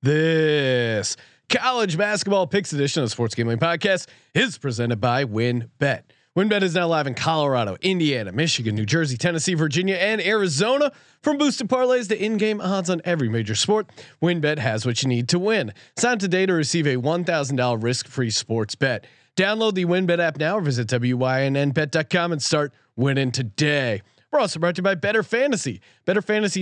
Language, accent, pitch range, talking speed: English, American, 135-190 Hz, 175 wpm